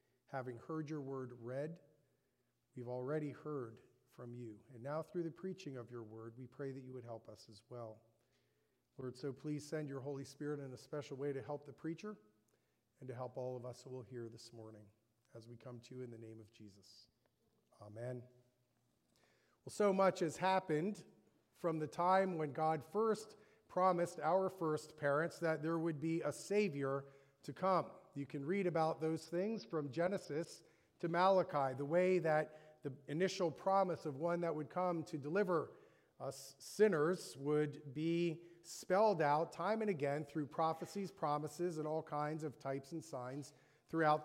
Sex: male